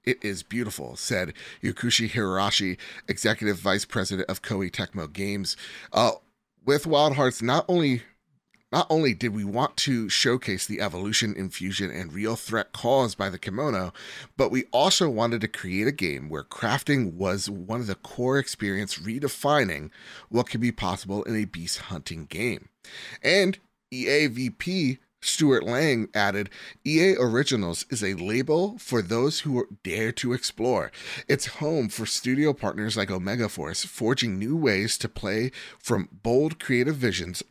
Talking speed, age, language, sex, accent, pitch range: 150 wpm, 30-49, English, male, American, 100-130 Hz